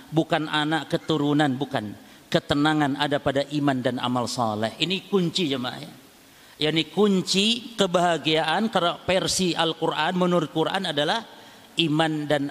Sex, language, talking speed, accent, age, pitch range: male, Indonesian, 120 wpm, native, 50-69, 140-165 Hz